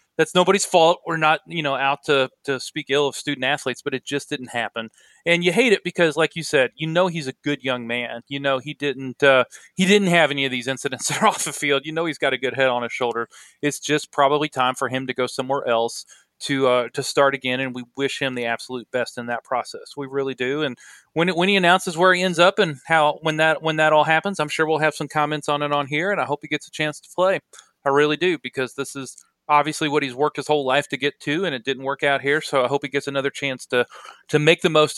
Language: English